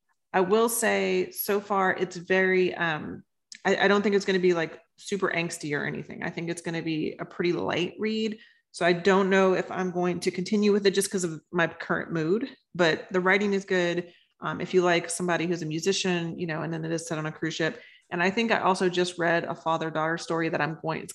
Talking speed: 240 wpm